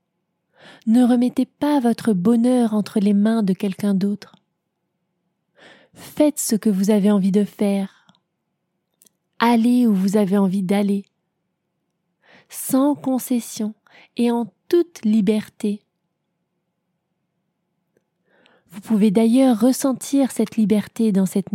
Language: French